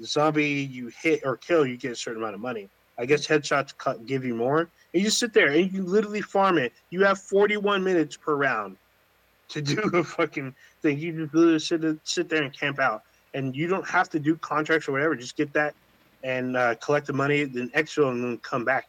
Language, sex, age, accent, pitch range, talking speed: English, male, 20-39, American, 135-160 Hz, 225 wpm